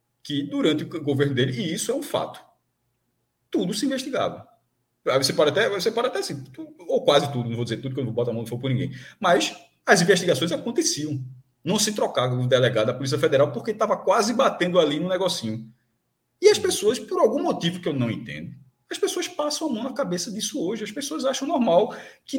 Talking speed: 215 wpm